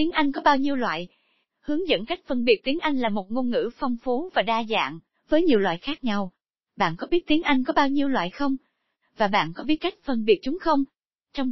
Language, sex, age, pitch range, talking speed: Vietnamese, female, 20-39, 220-295 Hz, 245 wpm